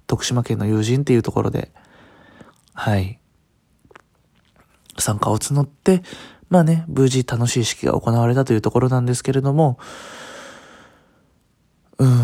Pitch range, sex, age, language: 115-145 Hz, male, 20-39, Japanese